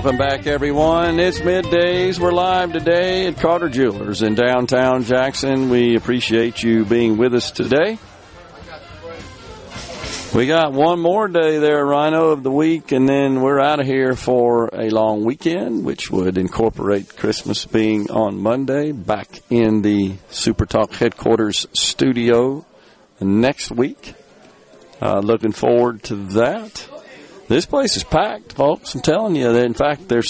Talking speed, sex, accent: 145 wpm, male, American